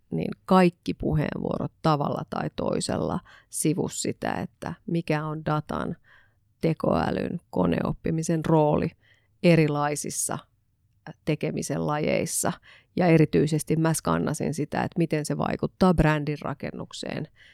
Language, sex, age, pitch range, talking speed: Finnish, female, 30-49, 145-165 Hz, 100 wpm